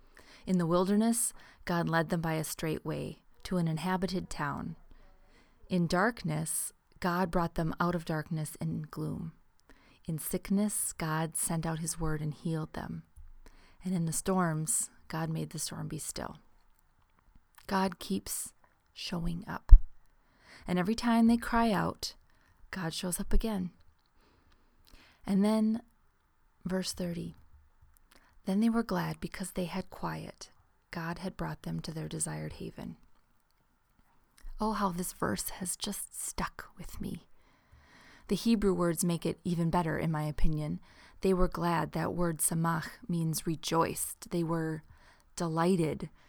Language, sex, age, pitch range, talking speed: English, female, 30-49, 160-190 Hz, 140 wpm